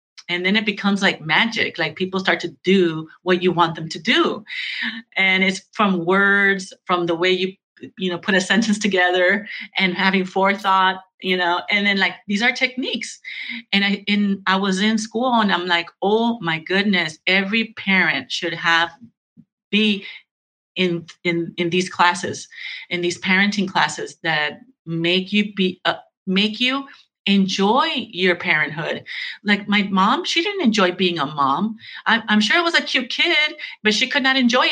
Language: English